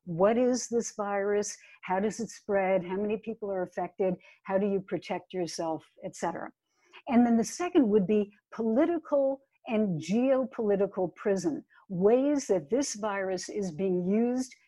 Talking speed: 145 wpm